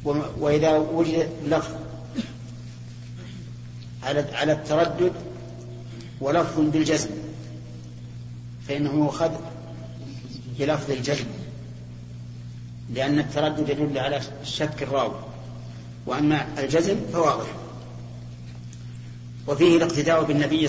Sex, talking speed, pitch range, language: male, 70 wpm, 115-145 Hz, Arabic